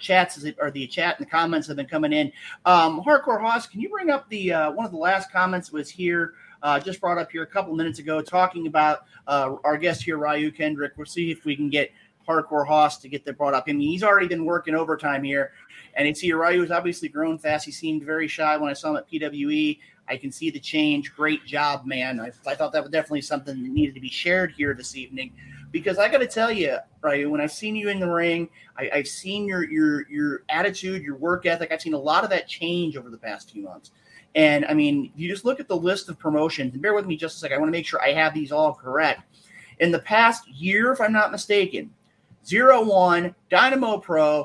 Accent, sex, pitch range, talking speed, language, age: American, male, 150-205 Hz, 245 wpm, English, 30-49